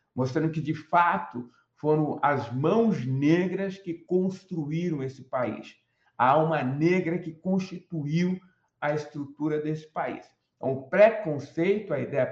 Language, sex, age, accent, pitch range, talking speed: Portuguese, male, 60-79, Brazilian, 145-195 Hz, 125 wpm